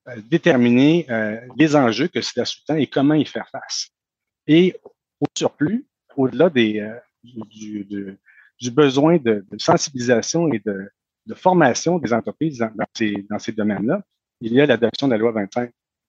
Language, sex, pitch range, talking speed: French, male, 105-150 Hz, 165 wpm